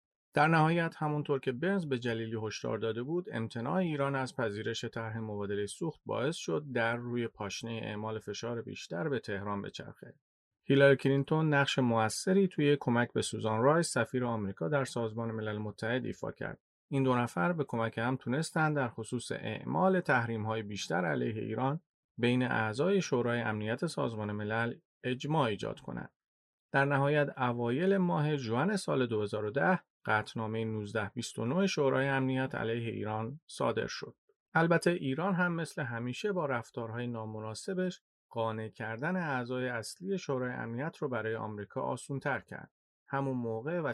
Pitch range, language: 110-145 Hz, Persian